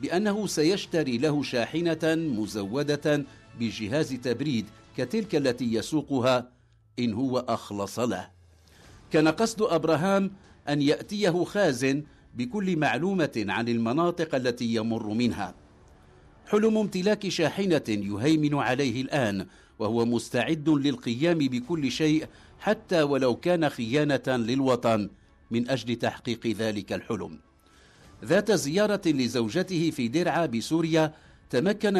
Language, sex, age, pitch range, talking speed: English, male, 60-79, 120-165 Hz, 105 wpm